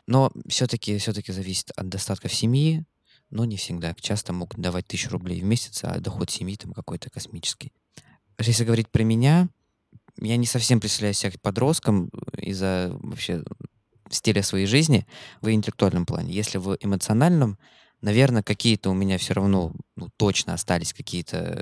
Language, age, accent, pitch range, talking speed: Russian, 20-39, native, 90-115 Hz, 155 wpm